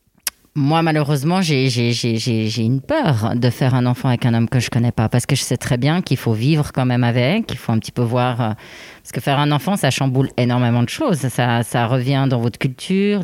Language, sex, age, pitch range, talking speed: French, female, 30-49, 120-155 Hz, 240 wpm